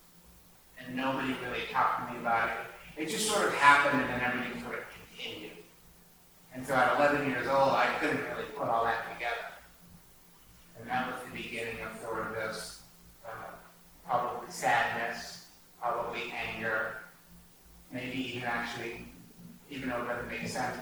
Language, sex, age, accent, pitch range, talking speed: English, male, 30-49, American, 115-140 Hz, 160 wpm